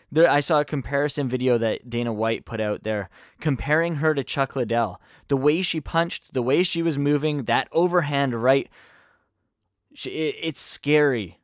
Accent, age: American, 10-29